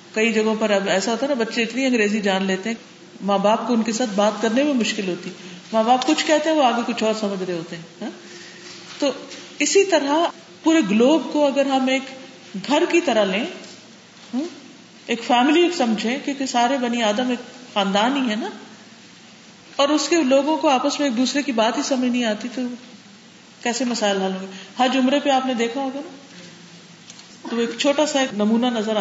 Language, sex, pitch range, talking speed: Urdu, female, 210-275 Hz, 200 wpm